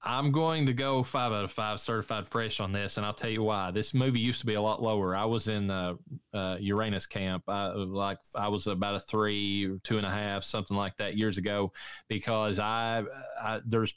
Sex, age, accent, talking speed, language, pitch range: male, 20-39, American, 225 wpm, English, 100-115 Hz